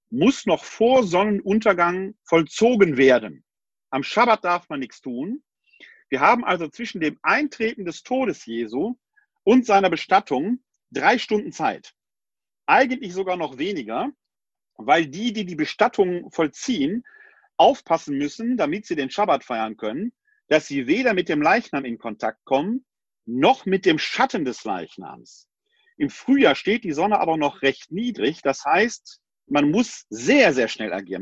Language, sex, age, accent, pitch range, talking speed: German, male, 40-59, German, 165-255 Hz, 150 wpm